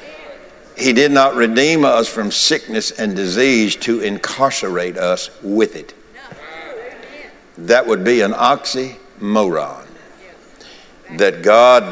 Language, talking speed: English, 105 wpm